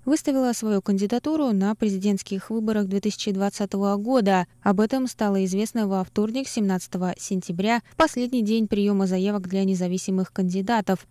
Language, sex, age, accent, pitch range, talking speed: Russian, female, 20-39, native, 190-240 Hz, 125 wpm